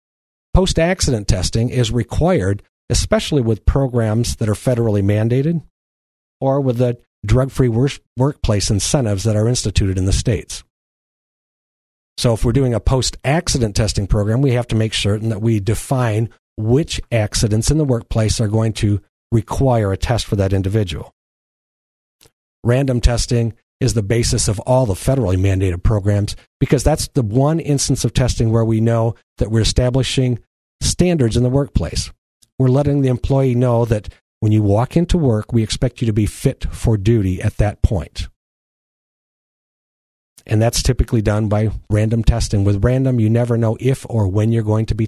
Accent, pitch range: American, 105-125 Hz